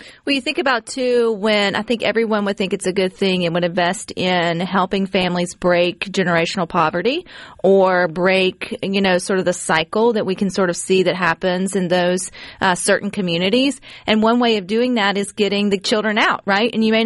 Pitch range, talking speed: 185-220 Hz, 210 wpm